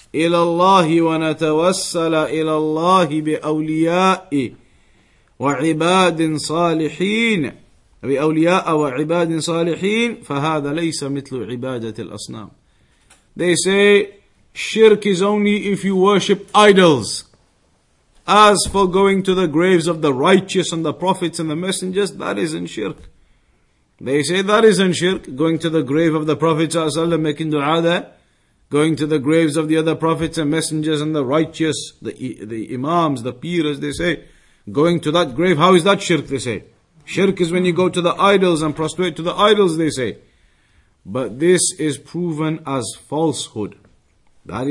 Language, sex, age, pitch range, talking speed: English, male, 50-69, 145-180 Hz, 150 wpm